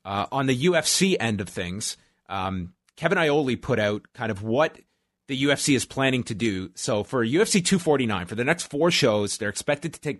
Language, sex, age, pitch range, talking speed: English, male, 30-49, 110-145 Hz, 200 wpm